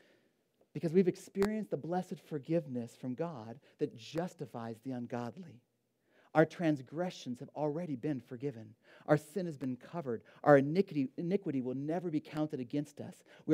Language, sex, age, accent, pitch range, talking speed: English, male, 40-59, American, 130-185 Hz, 145 wpm